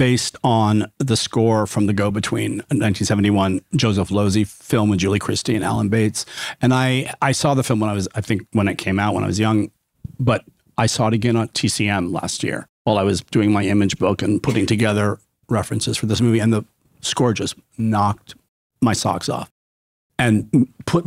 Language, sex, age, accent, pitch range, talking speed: English, male, 40-59, American, 105-130 Hz, 195 wpm